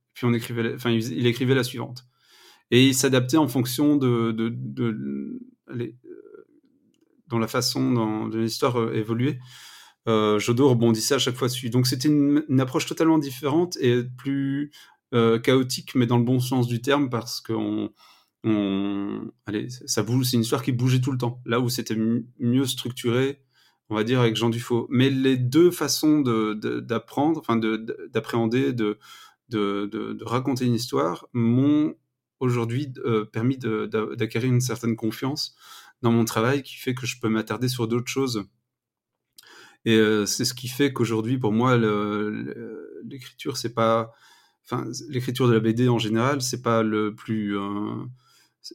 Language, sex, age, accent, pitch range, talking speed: French, male, 30-49, French, 110-130 Hz, 165 wpm